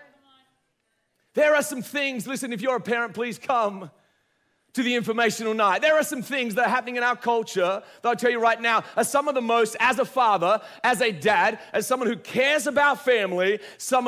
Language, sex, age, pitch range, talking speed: English, male, 40-59, 225-270 Hz, 210 wpm